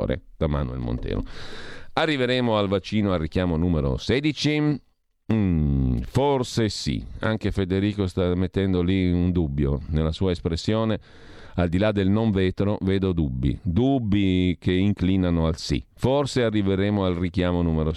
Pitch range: 85-110 Hz